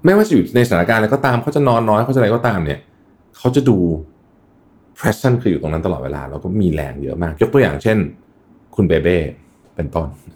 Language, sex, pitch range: Thai, male, 80-110 Hz